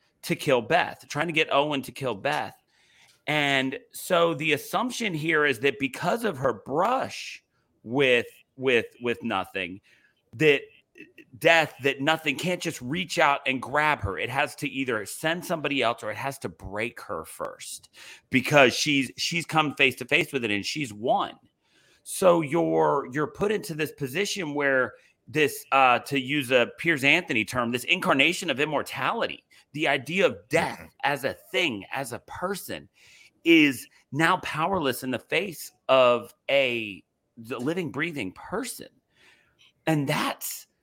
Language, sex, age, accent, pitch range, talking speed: English, male, 40-59, American, 135-170 Hz, 155 wpm